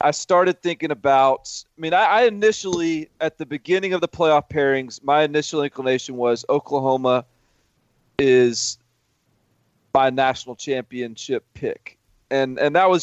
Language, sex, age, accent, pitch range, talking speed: English, male, 30-49, American, 120-160 Hz, 140 wpm